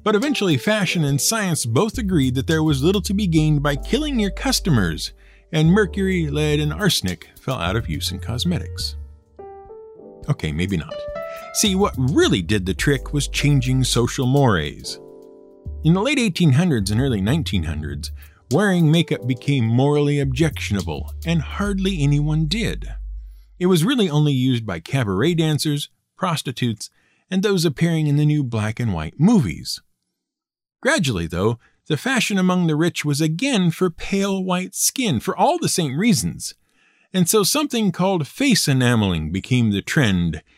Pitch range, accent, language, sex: 120-185 Hz, American, English, male